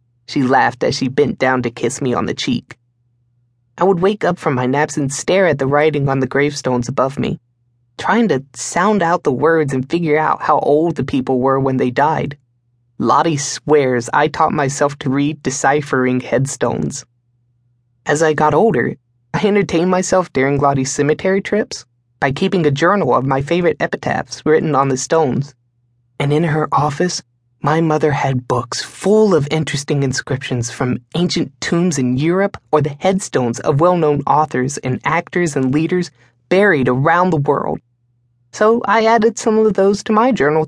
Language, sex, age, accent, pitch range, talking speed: English, male, 20-39, American, 120-165 Hz, 175 wpm